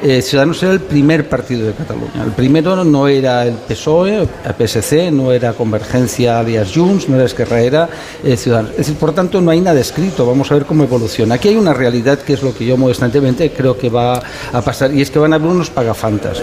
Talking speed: 230 wpm